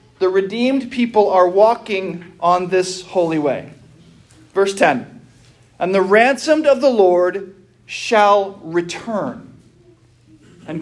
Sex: male